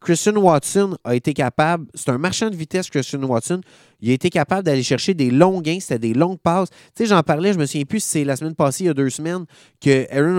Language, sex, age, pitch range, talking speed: French, male, 20-39, 135-180 Hz, 265 wpm